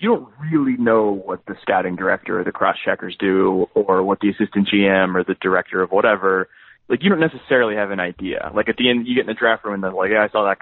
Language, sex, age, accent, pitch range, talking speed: English, male, 20-39, American, 95-115 Hz, 260 wpm